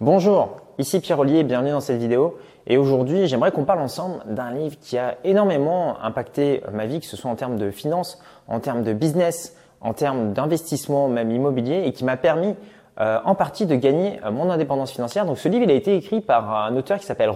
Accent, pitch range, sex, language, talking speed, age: French, 120-175 Hz, male, French, 220 wpm, 20-39